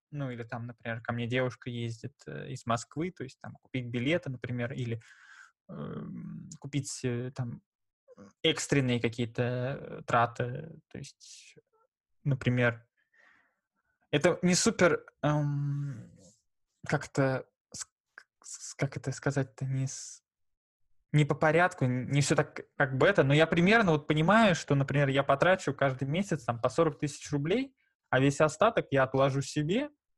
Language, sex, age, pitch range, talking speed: Russian, male, 20-39, 125-160 Hz, 130 wpm